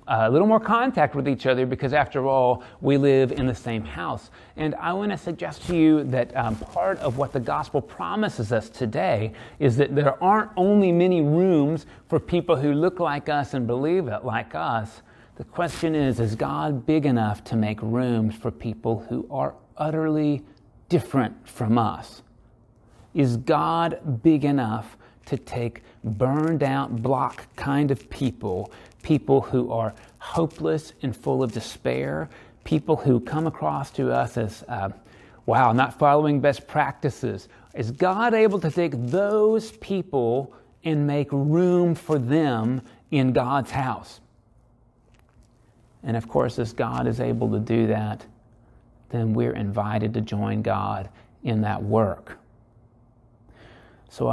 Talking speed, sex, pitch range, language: 150 wpm, male, 115-150 Hz, English